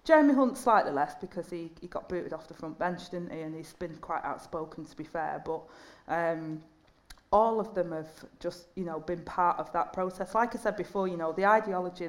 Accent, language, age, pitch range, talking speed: British, English, 40-59, 160-180 Hz, 225 wpm